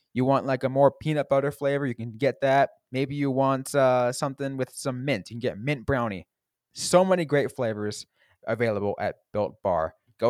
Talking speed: 200 wpm